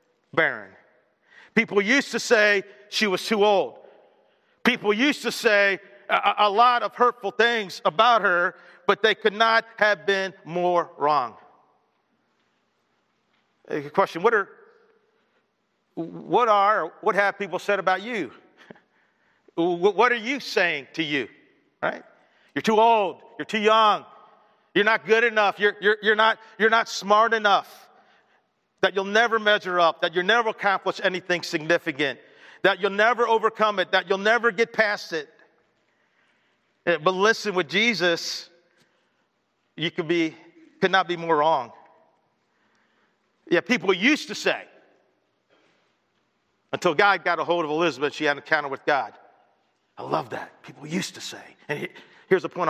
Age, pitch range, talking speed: 50-69, 180-225 Hz, 145 wpm